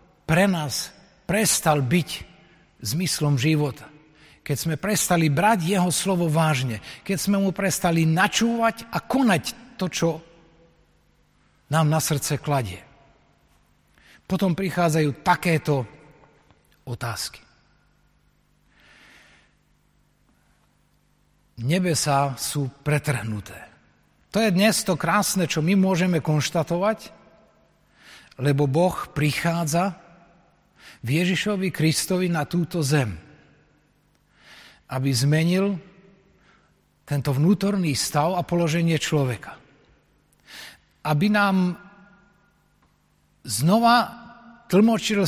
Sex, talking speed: male, 80 wpm